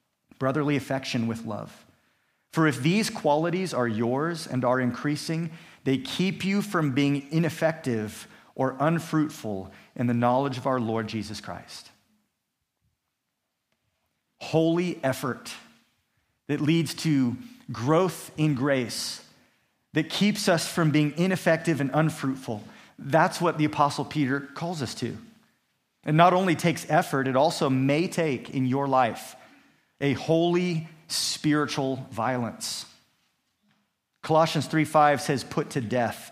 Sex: male